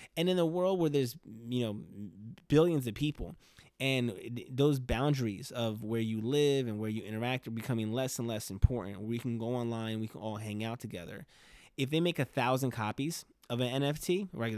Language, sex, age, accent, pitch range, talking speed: English, male, 20-39, American, 110-130 Hz, 200 wpm